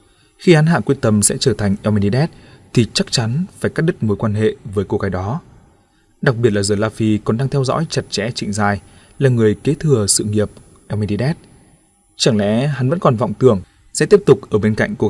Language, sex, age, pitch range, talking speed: Vietnamese, male, 20-39, 105-130 Hz, 225 wpm